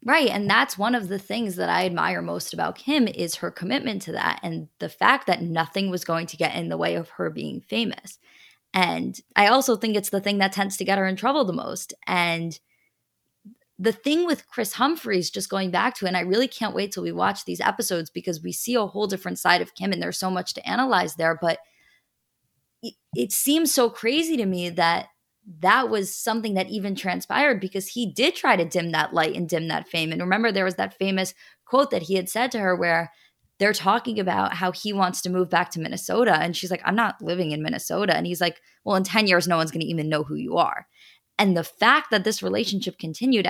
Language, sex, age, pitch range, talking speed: English, female, 20-39, 175-230 Hz, 235 wpm